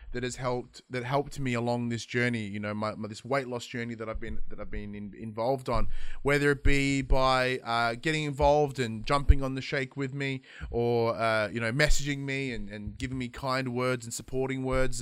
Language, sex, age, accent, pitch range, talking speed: English, male, 20-39, Australian, 120-150 Hz, 220 wpm